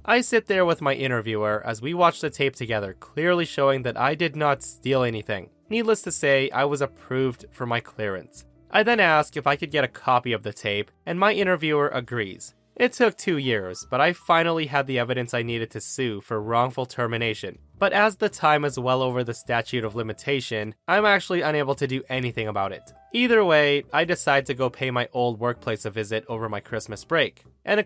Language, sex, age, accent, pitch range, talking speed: English, male, 20-39, American, 115-160 Hz, 215 wpm